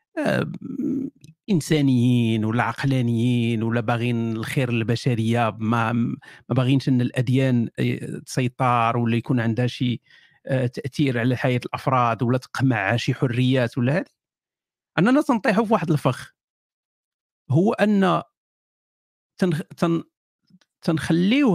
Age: 50-69